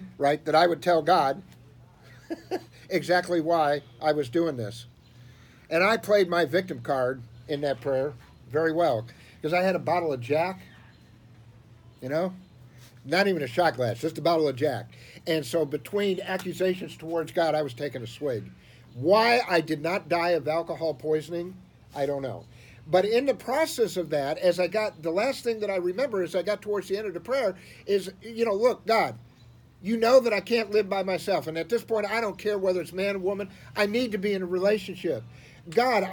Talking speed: 200 wpm